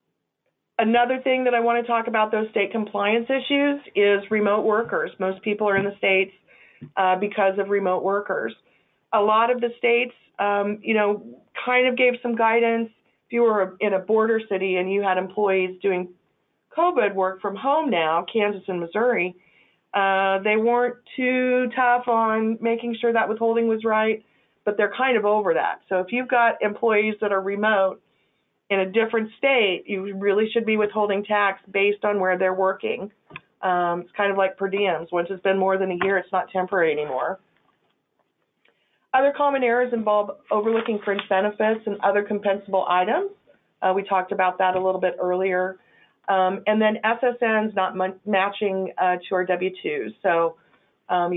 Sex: female